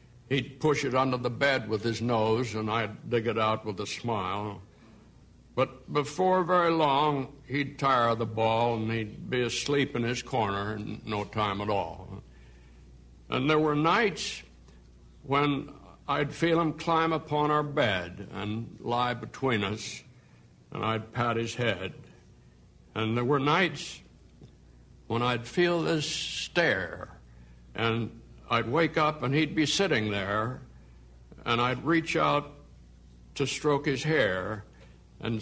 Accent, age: American, 60-79